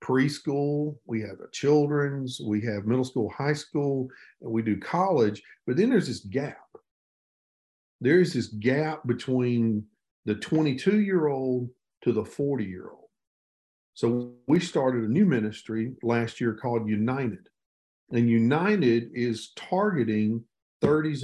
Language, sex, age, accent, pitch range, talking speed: English, male, 50-69, American, 110-145 Hz, 135 wpm